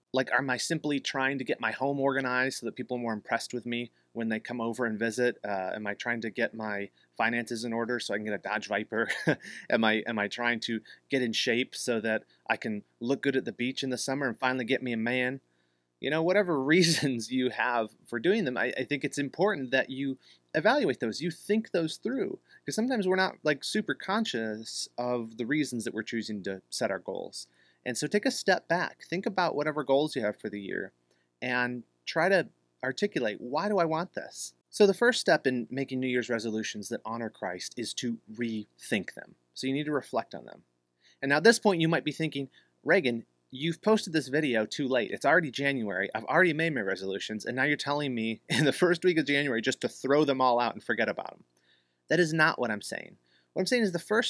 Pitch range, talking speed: 110-150 Hz, 235 wpm